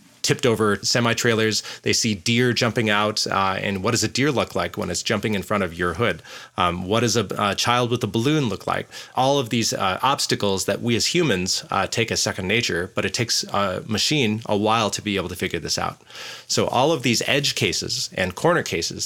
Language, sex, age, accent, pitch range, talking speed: English, male, 30-49, American, 100-125 Hz, 225 wpm